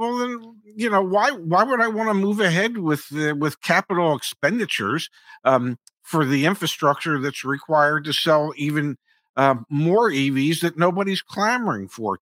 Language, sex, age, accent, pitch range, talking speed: English, male, 50-69, American, 145-210 Hz, 165 wpm